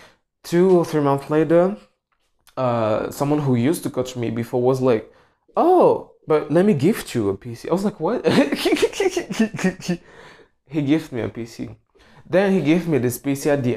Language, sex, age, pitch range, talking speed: English, male, 20-39, 120-160 Hz, 175 wpm